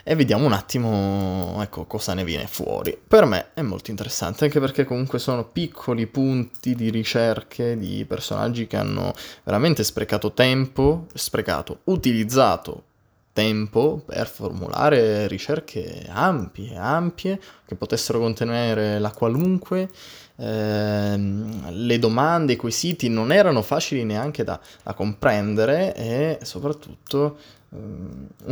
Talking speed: 120 wpm